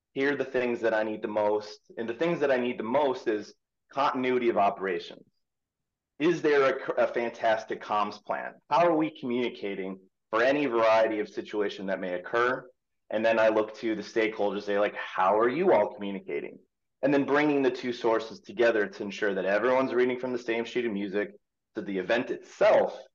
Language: English